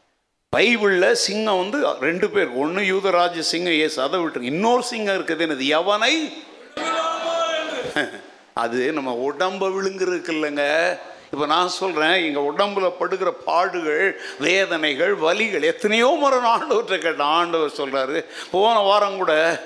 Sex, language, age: male, Tamil, 60-79